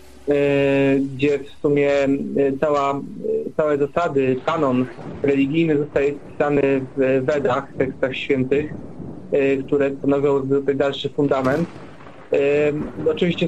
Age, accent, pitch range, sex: 30-49, native, 140-155 Hz, male